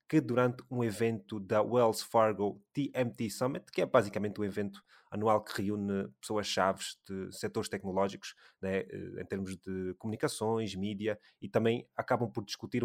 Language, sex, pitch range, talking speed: Portuguese, male, 105-120 Hz, 150 wpm